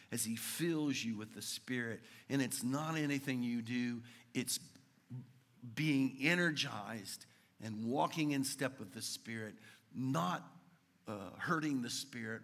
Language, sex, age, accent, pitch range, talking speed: English, male, 50-69, American, 115-150 Hz, 135 wpm